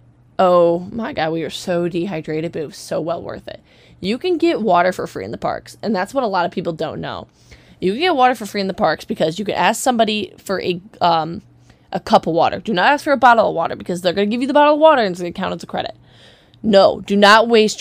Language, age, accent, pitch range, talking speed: English, 20-39, American, 175-210 Hz, 280 wpm